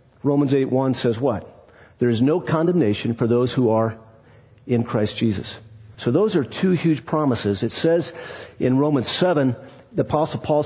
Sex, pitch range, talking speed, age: male, 120-150 Hz, 165 wpm, 50-69